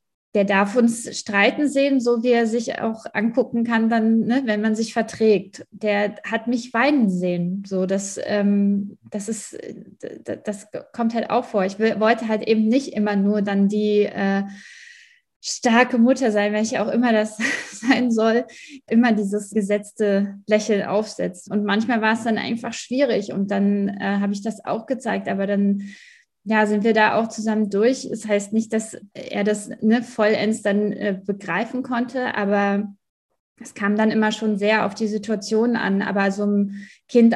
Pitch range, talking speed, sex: 205-230 Hz, 165 wpm, female